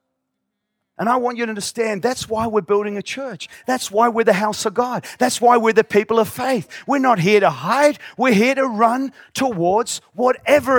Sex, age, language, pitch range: male, 40-59, English, 190-250 Hz